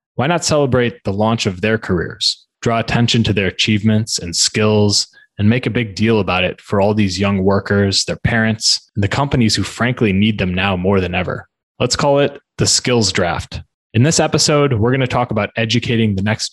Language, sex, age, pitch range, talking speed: English, male, 20-39, 100-120 Hz, 205 wpm